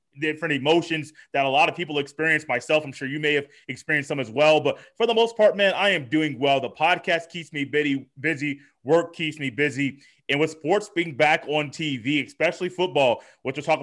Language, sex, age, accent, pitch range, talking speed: English, male, 30-49, American, 155-205 Hz, 215 wpm